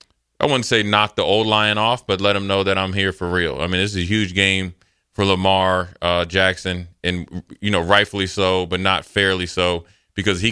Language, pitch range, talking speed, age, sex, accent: English, 90-105 Hz, 225 wpm, 20-39, male, American